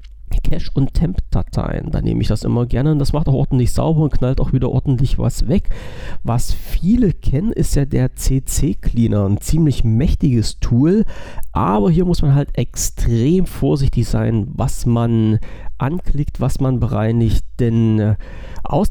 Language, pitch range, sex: German, 110-140 Hz, male